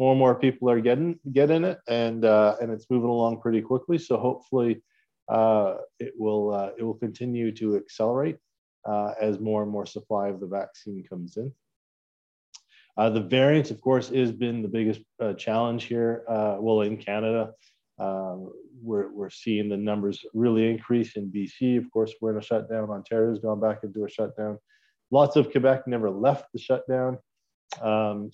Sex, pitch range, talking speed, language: male, 100-130 Hz, 180 wpm, English